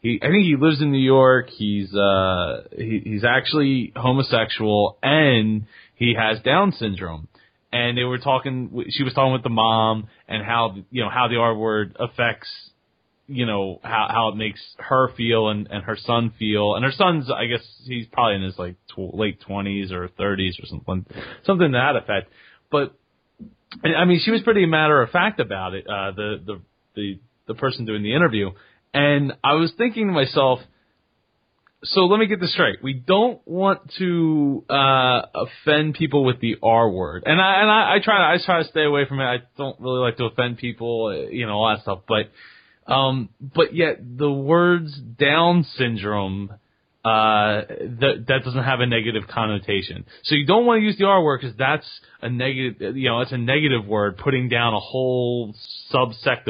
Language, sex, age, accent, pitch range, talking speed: English, male, 30-49, American, 105-145 Hz, 190 wpm